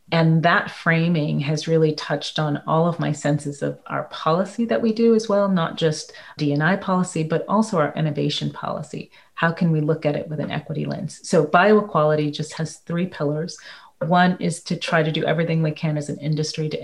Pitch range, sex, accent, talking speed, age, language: 150-165 Hz, female, American, 205 wpm, 30-49, English